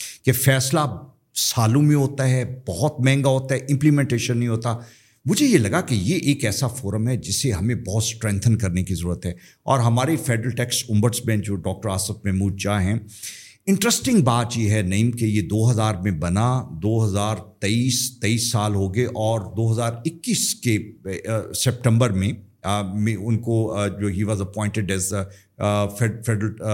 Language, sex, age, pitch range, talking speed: Urdu, male, 50-69, 110-150 Hz, 165 wpm